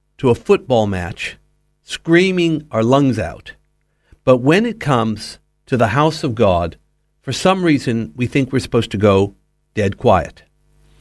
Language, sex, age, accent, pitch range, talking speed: English, male, 60-79, American, 110-155 Hz, 155 wpm